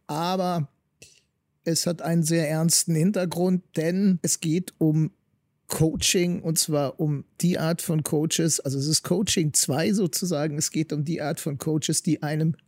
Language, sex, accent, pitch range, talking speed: German, male, German, 150-175 Hz, 160 wpm